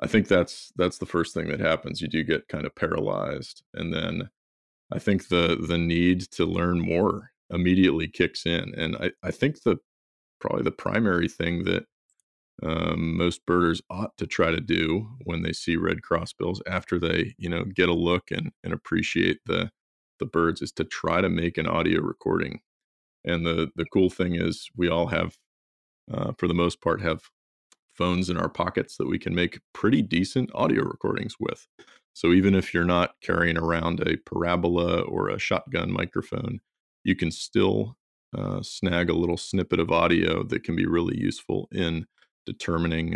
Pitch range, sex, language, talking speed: 80-90 Hz, male, English, 180 wpm